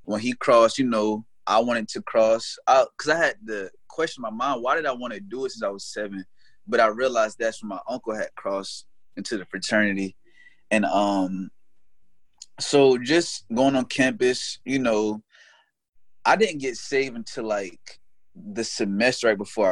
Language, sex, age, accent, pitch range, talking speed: English, male, 20-39, American, 105-120 Hz, 185 wpm